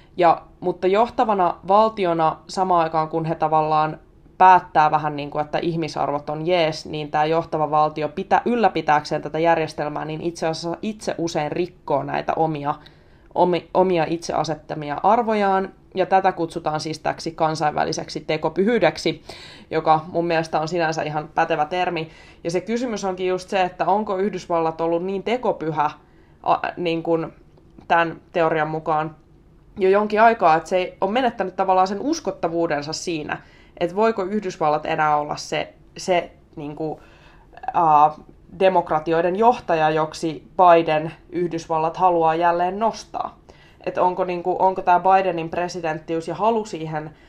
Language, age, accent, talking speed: Finnish, 20-39, native, 135 wpm